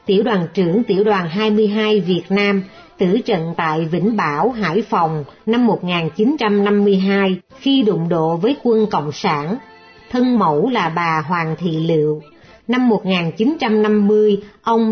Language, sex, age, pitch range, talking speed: Vietnamese, female, 60-79, 180-230 Hz, 135 wpm